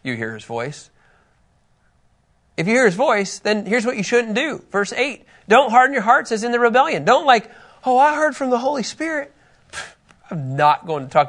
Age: 30-49